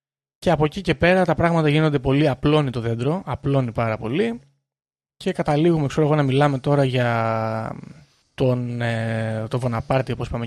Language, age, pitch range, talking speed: Greek, 30-49, 125-165 Hz, 165 wpm